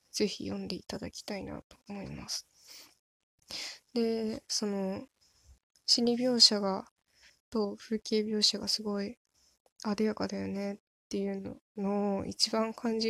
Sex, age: female, 10-29